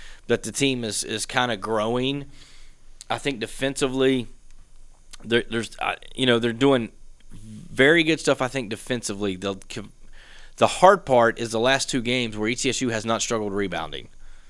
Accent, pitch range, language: American, 105-120 Hz, English